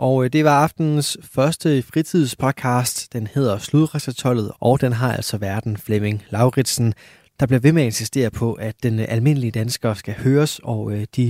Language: Danish